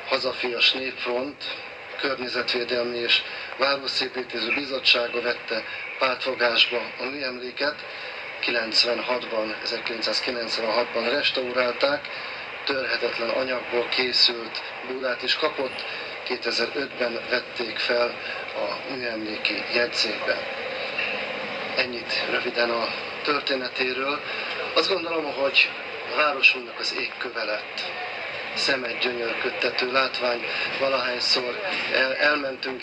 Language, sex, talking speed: Hungarian, male, 80 wpm